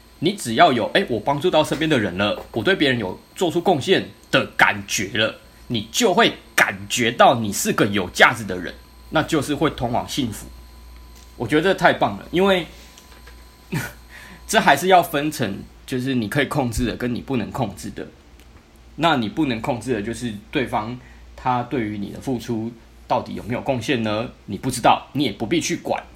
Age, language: 20-39, Chinese